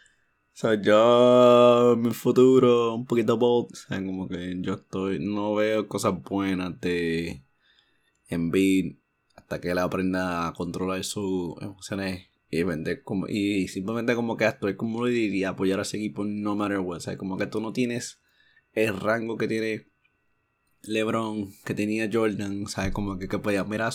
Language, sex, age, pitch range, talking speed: Spanish, male, 20-39, 95-115 Hz, 160 wpm